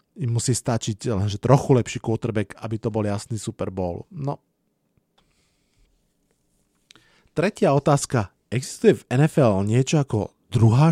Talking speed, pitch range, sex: 120 wpm, 115-150 Hz, male